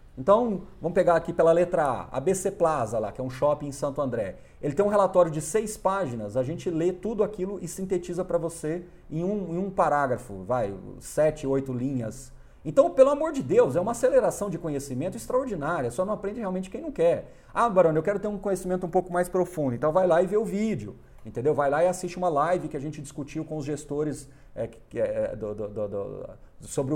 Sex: male